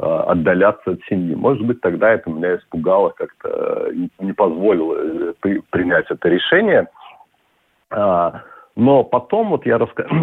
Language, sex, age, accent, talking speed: Russian, male, 40-59, native, 130 wpm